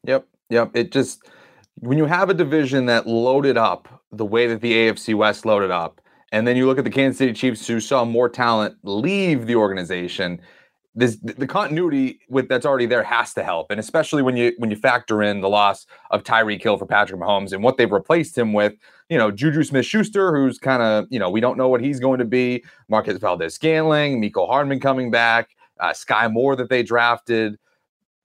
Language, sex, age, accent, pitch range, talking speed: English, male, 30-49, American, 105-135 Hz, 205 wpm